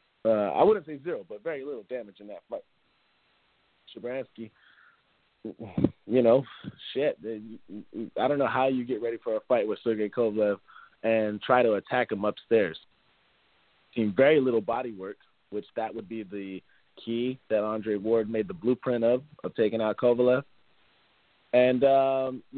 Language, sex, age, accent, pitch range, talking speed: English, male, 30-49, American, 110-130 Hz, 155 wpm